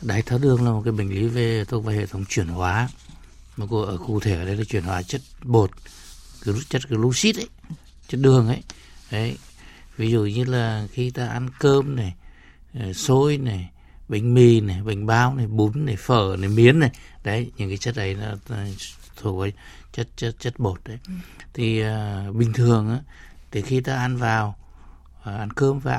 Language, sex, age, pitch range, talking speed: Vietnamese, male, 60-79, 95-120 Hz, 200 wpm